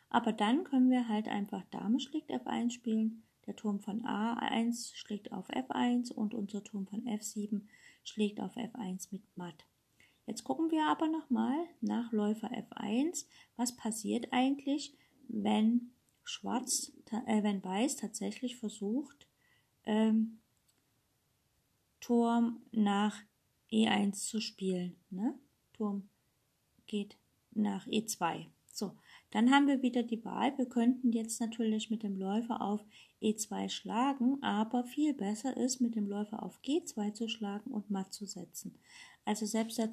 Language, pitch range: German, 205-245 Hz